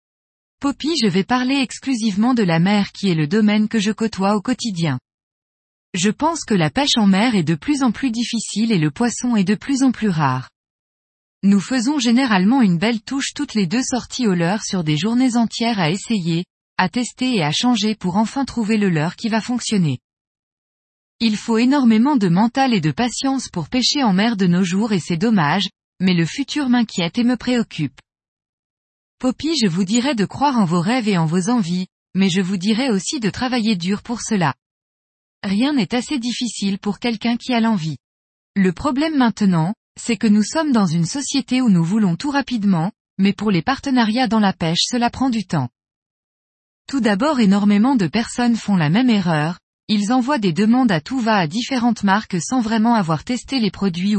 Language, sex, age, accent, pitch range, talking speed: French, female, 20-39, French, 185-245 Hz, 195 wpm